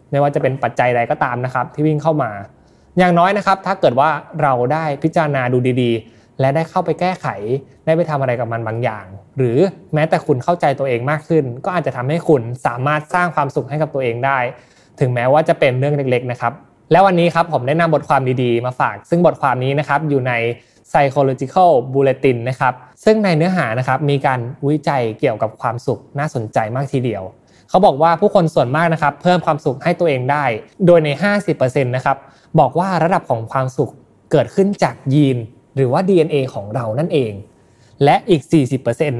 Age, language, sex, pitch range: 20-39, Thai, male, 125-160 Hz